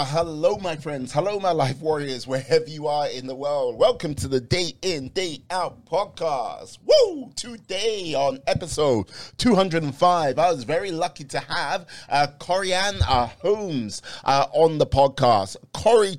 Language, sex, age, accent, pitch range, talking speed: English, male, 30-49, British, 135-175 Hz, 150 wpm